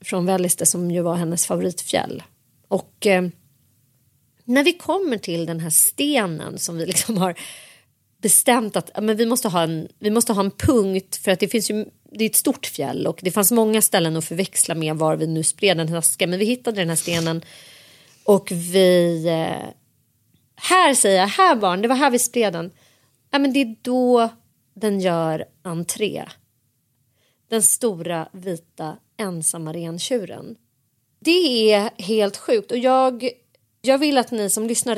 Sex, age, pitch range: female, 30-49, 170-250 Hz